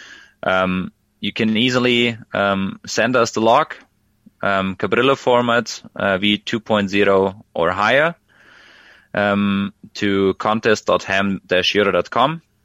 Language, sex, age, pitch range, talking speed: English, male, 20-39, 95-110 Hz, 90 wpm